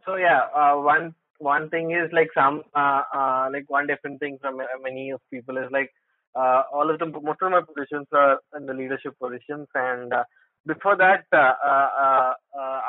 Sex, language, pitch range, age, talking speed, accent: male, English, 125-150 Hz, 20-39, 185 wpm, Indian